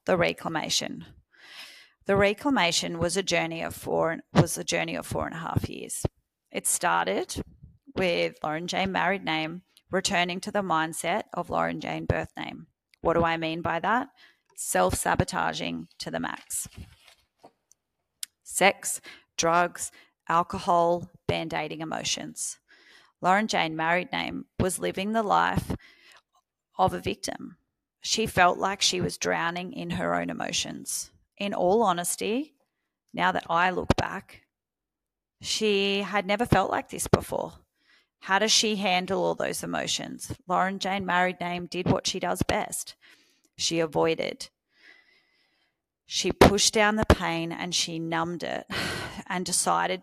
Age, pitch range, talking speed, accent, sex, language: 30-49, 165-200 Hz, 135 wpm, Australian, female, English